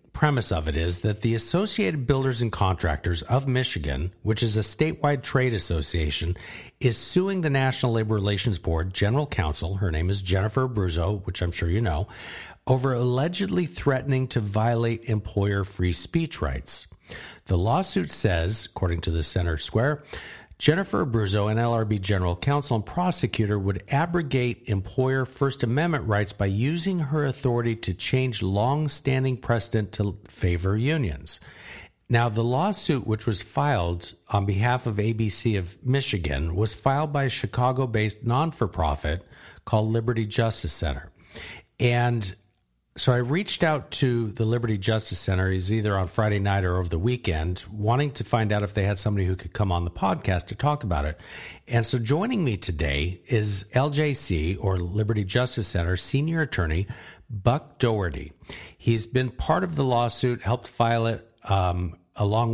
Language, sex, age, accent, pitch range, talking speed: English, male, 50-69, American, 95-130 Hz, 160 wpm